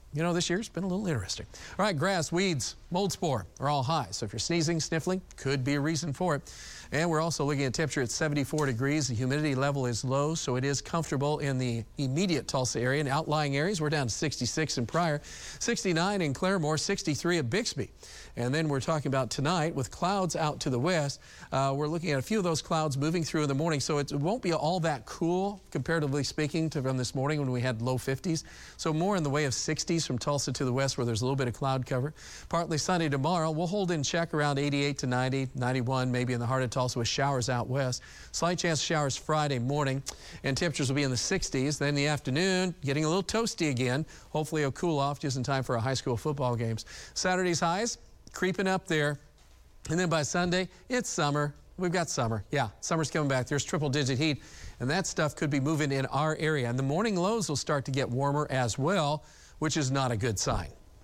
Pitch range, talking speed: 130-165 Hz, 230 wpm